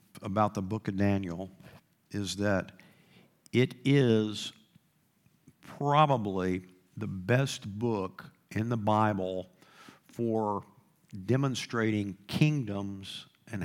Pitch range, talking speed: 95-120 Hz, 90 wpm